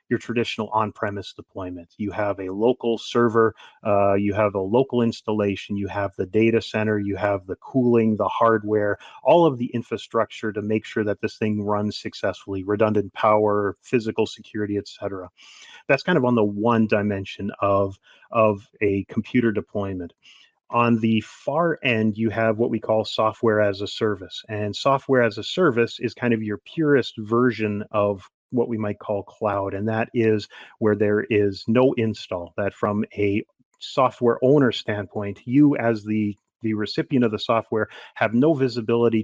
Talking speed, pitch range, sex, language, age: 165 wpm, 105-120 Hz, male, English, 30-49